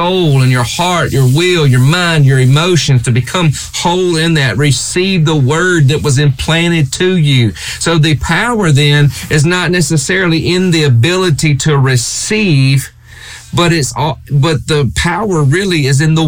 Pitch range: 135-180 Hz